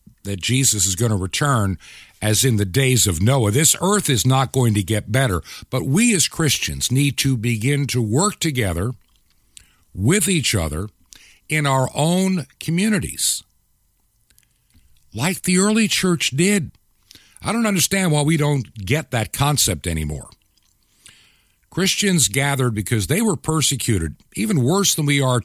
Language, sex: English, male